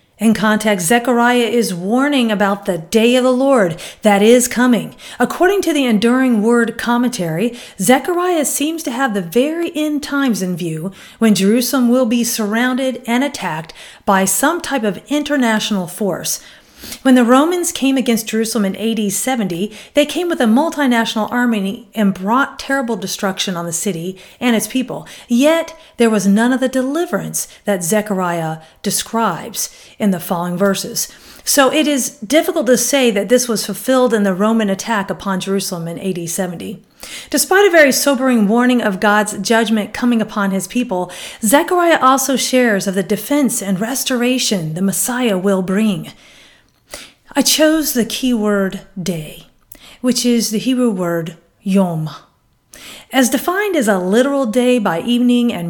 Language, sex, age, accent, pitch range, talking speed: English, female, 40-59, American, 195-255 Hz, 155 wpm